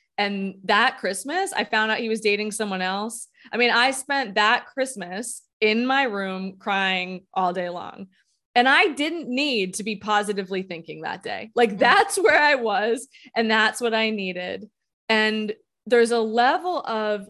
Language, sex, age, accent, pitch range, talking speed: English, female, 20-39, American, 200-250 Hz, 170 wpm